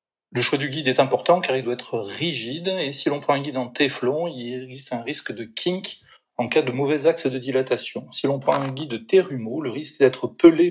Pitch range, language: 120-145 Hz, French